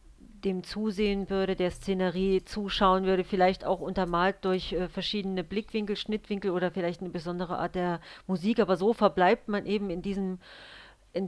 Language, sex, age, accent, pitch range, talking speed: German, female, 40-59, German, 180-205 Hz, 155 wpm